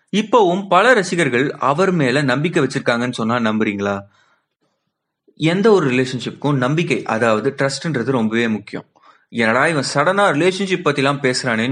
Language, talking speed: Tamil, 125 wpm